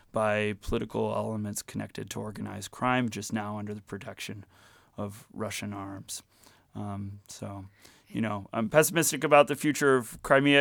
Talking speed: 145 wpm